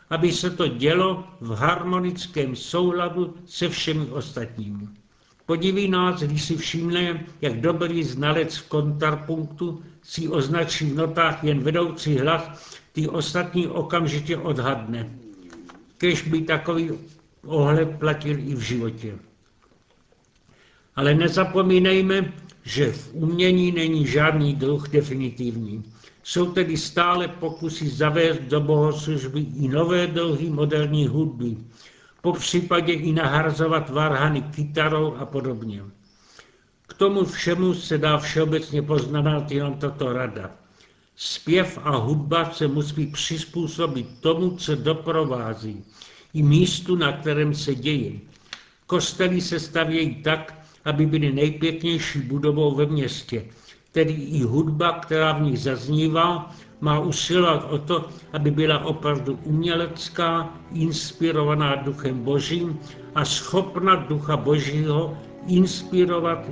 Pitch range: 145-170 Hz